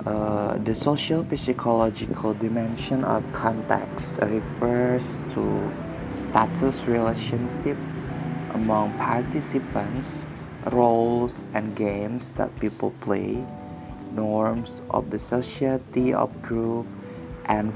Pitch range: 110-130 Hz